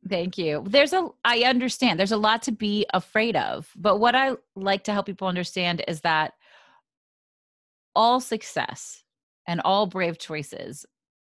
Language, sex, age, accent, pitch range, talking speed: English, female, 30-49, American, 160-215 Hz, 155 wpm